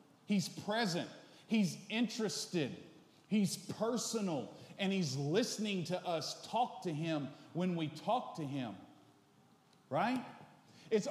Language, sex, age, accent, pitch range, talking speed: English, male, 40-59, American, 160-220 Hz, 115 wpm